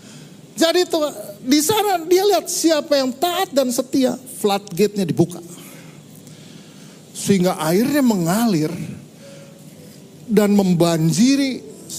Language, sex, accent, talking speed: Indonesian, male, native, 95 wpm